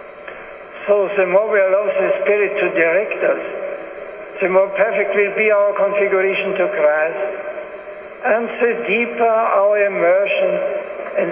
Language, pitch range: English, 190-230 Hz